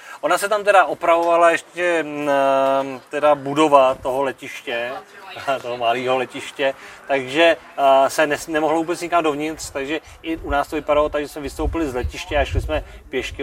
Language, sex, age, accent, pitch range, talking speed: Czech, male, 30-49, native, 120-145 Hz, 150 wpm